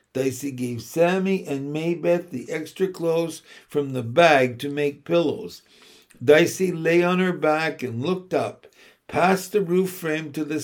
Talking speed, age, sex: 160 wpm, 60-79, male